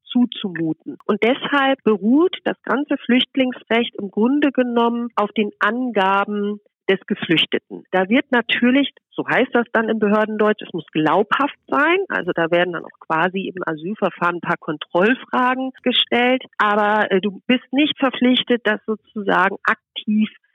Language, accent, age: German, German, 40-59